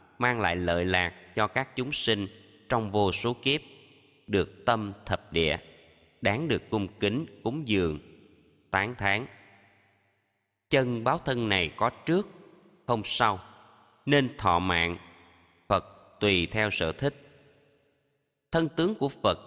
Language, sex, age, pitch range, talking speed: Vietnamese, male, 20-39, 95-130 Hz, 135 wpm